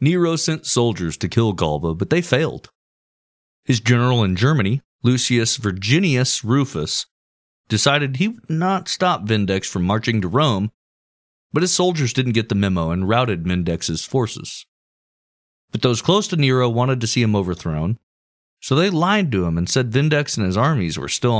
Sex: male